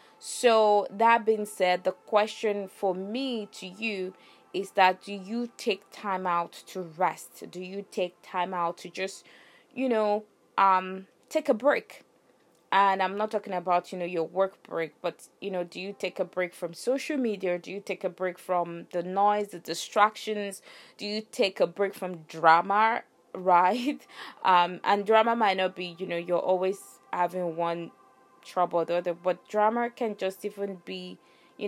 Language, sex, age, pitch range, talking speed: English, female, 20-39, 175-215 Hz, 175 wpm